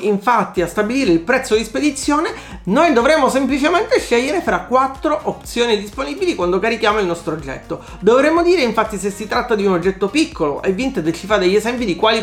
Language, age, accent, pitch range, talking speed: Italian, 40-59, native, 195-290 Hz, 185 wpm